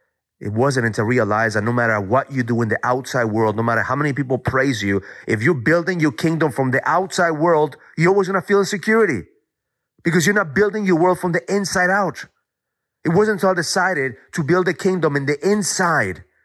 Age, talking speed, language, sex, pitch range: 30-49, 215 wpm, English, male, 105-170 Hz